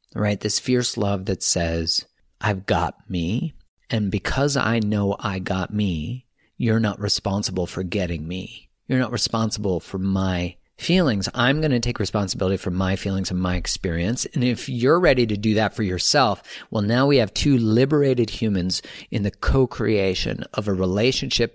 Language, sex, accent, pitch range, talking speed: English, male, American, 100-125 Hz, 170 wpm